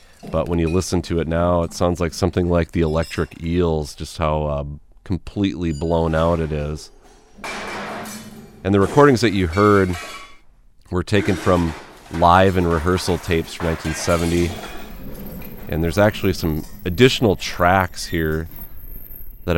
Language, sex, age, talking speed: English, male, 30-49, 140 wpm